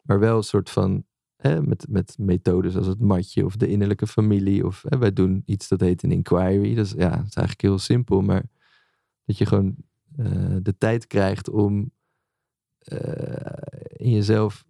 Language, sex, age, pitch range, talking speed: Dutch, male, 20-39, 100-125 Hz, 165 wpm